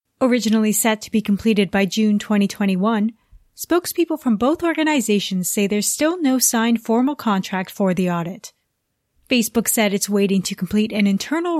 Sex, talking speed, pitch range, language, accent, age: female, 155 wpm, 200-255 Hz, English, American, 30-49